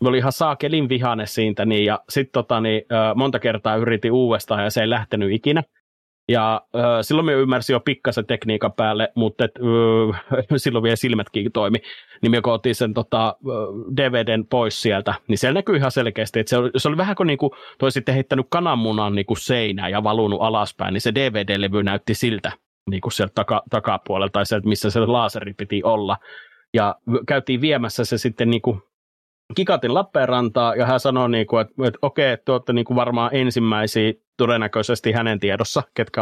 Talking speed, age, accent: 175 wpm, 30-49, native